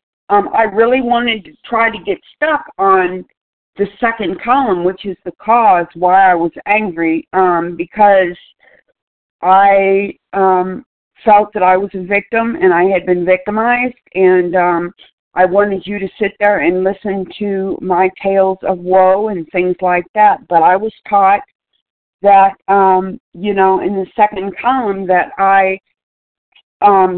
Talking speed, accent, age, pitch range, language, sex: 155 wpm, American, 50-69, 185-215 Hz, English, female